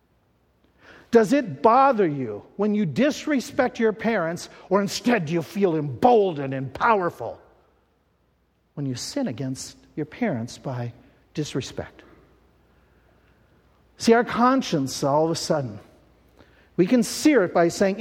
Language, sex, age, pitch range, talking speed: English, male, 50-69, 140-225 Hz, 125 wpm